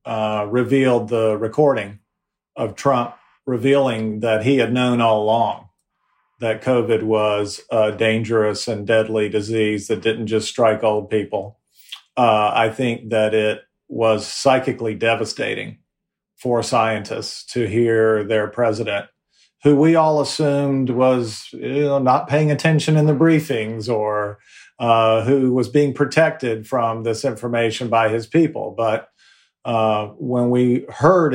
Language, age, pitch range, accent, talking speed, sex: English, 40-59, 110-140 Hz, American, 130 wpm, male